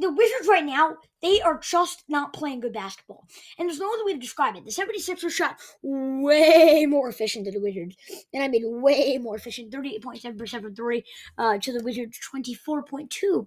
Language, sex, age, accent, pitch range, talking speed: English, female, 20-39, American, 235-315 Hz, 210 wpm